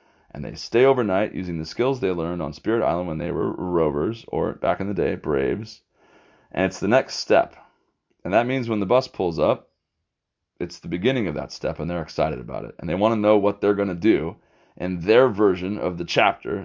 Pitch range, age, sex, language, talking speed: 95-120 Hz, 30-49, male, English, 225 wpm